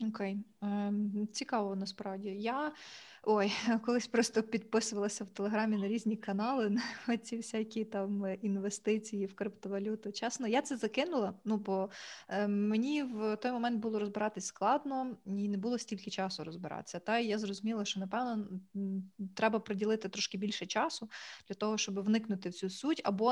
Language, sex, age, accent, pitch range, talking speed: Ukrainian, female, 20-39, native, 195-225 Hz, 150 wpm